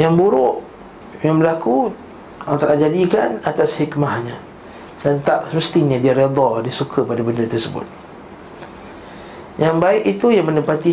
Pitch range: 125-155 Hz